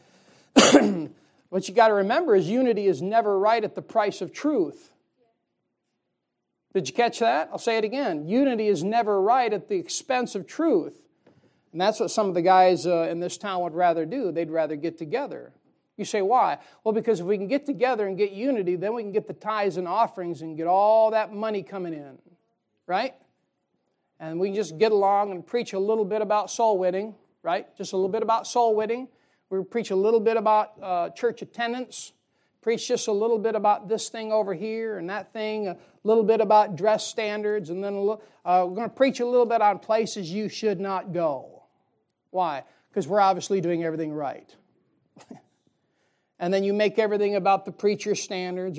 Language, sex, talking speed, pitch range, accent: English, male, 200 wpm, 185-225 Hz, American